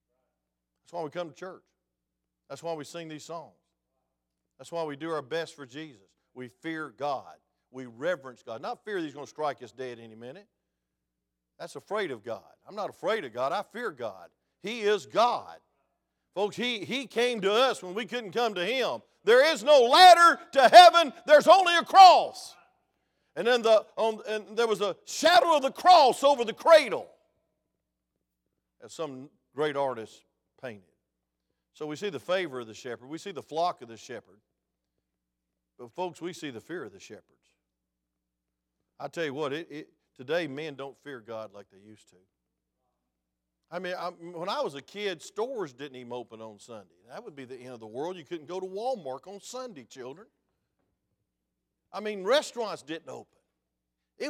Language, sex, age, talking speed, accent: English, male, 50-69, 185 wpm, American